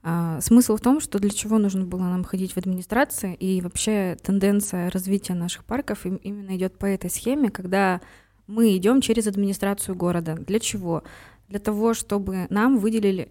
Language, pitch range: Russian, 175-210 Hz